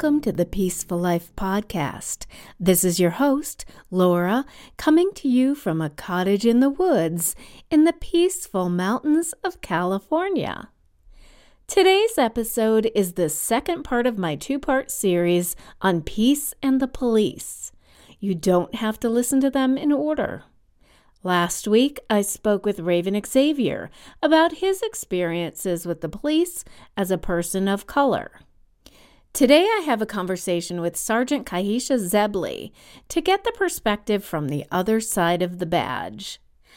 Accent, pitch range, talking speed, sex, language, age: American, 175-260 Hz, 145 wpm, female, English, 40-59